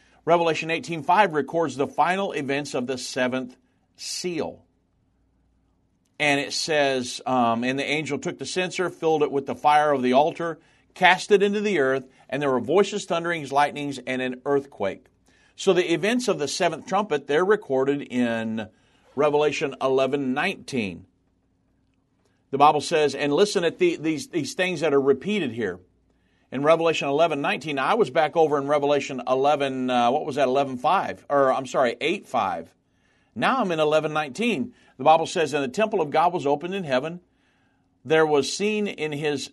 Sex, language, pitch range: male, English, 130-170 Hz